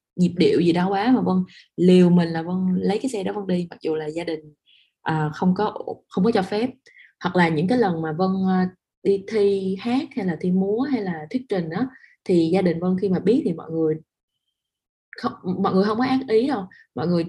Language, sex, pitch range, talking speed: Vietnamese, female, 180-230 Hz, 240 wpm